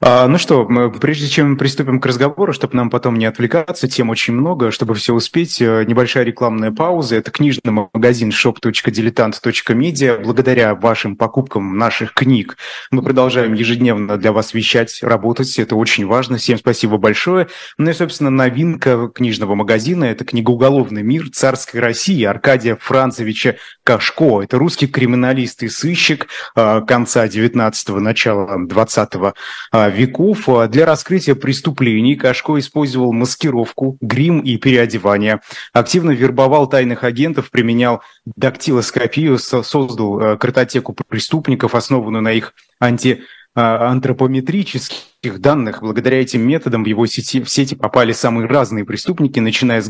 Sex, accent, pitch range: male, native, 115-135 Hz